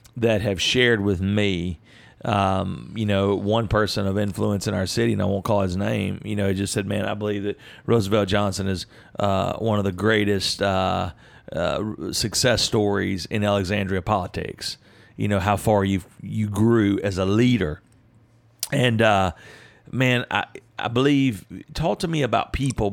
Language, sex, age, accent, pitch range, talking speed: English, male, 40-59, American, 100-115 Hz, 175 wpm